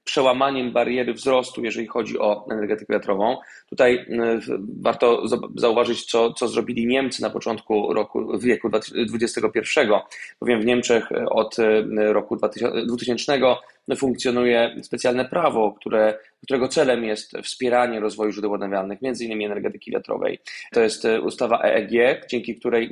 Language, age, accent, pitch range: Polish, 20-39, native, 110-130 Hz